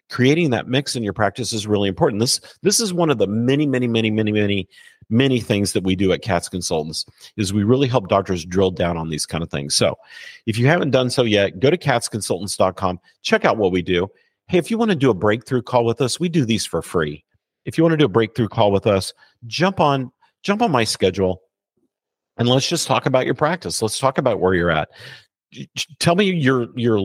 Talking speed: 230 wpm